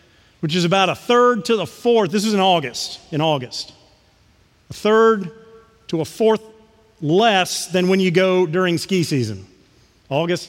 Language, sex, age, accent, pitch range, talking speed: English, male, 40-59, American, 125-205 Hz, 160 wpm